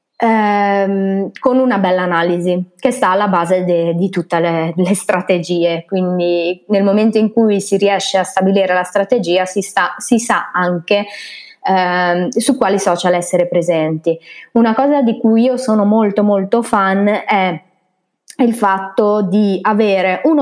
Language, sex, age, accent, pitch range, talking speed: Italian, female, 20-39, native, 180-230 Hz, 145 wpm